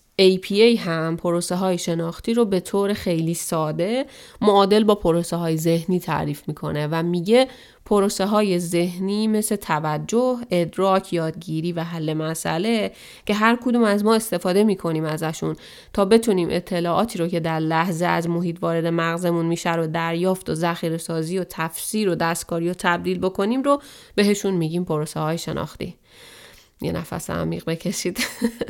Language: Persian